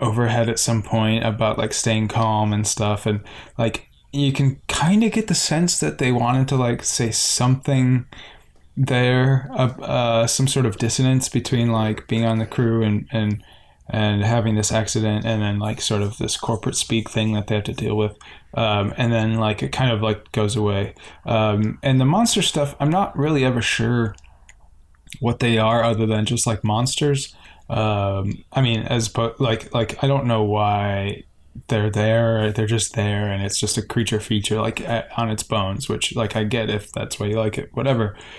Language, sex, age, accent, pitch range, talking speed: English, male, 10-29, American, 105-125 Hz, 195 wpm